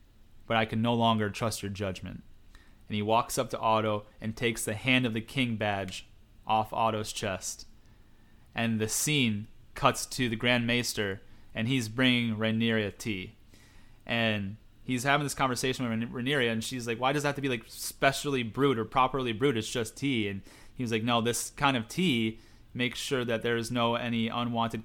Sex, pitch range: male, 110-125 Hz